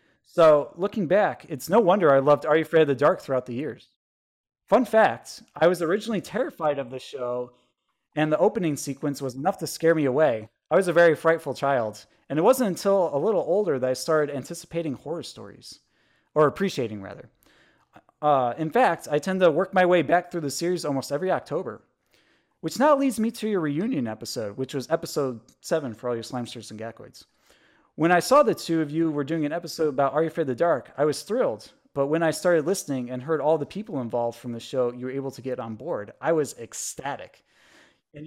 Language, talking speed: English, 215 wpm